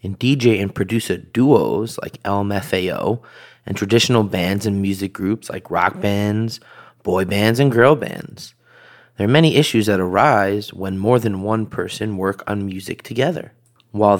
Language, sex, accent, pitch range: English, male, American, 95-110 Hz